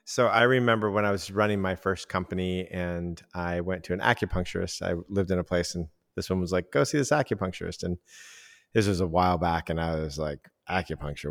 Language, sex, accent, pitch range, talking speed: English, male, American, 85-95 Hz, 220 wpm